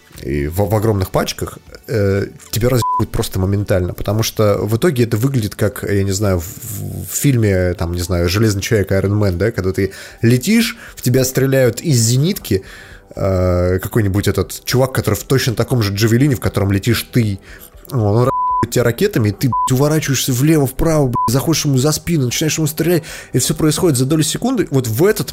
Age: 30-49